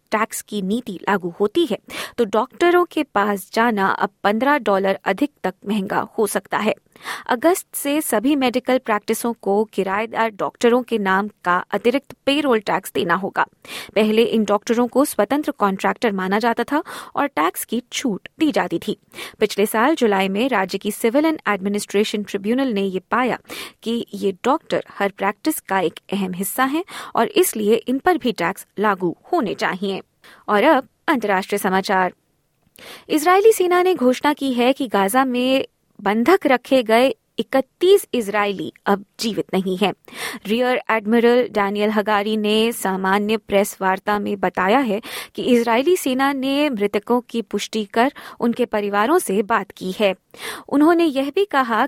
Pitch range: 200-265 Hz